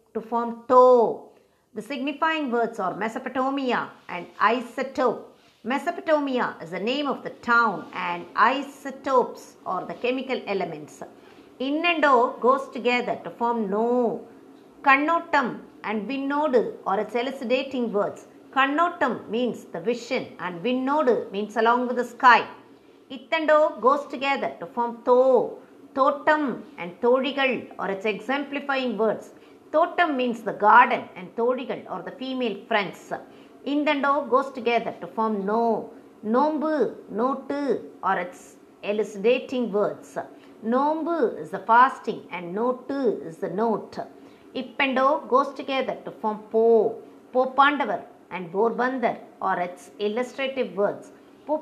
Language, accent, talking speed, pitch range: Tamil, native, 125 wpm, 220-275 Hz